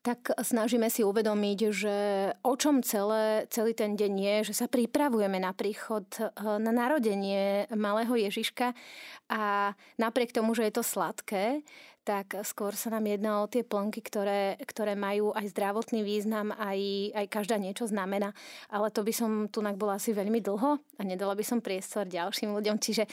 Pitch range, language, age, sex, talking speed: 205-240 Hz, Slovak, 30-49, female, 165 wpm